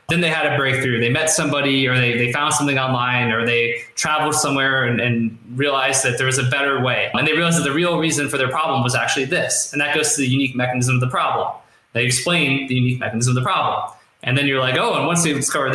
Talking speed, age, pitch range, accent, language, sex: 255 wpm, 20-39, 125-155 Hz, American, English, male